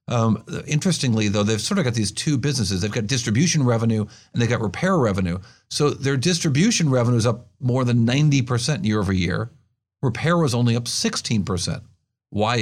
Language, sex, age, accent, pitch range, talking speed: English, male, 50-69, American, 115-145 Hz, 175 wpm